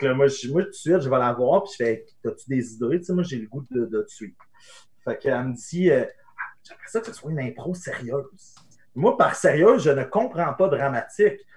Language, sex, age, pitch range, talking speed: French, male, 30-49, 140-185 Hz, 255 wpm